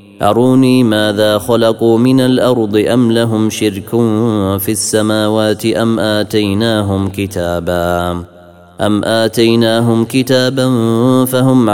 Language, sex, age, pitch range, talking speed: Arabic, male, 30-49, 100-115 Hz, 85 wpm